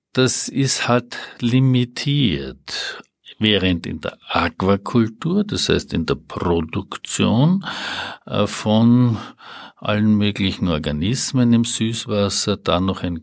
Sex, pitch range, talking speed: male, 100-145 Hz, 100 wpm